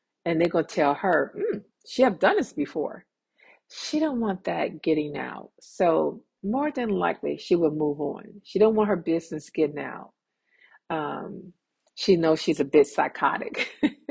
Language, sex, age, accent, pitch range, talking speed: English, female, 50-69, American, 150-200 Hz, 170 wpm